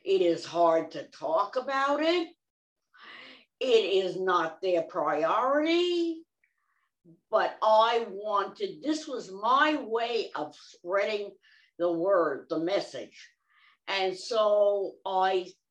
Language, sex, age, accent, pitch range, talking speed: English, female, 50-69, American, 185-295 Hz, 105 wpm